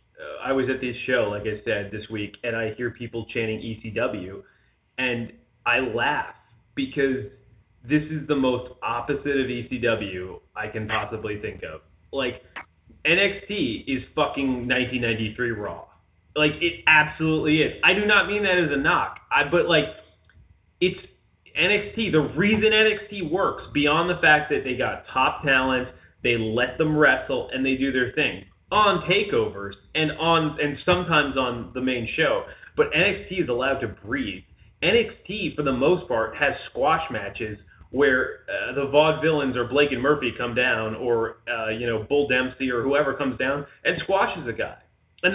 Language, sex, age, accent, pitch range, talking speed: English, male, 20-39, American, 115-155 Hz, 165 wpm